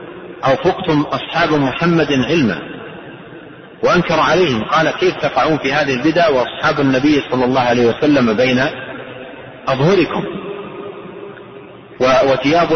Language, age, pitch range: Arabic, 40-59, 130-170 Hz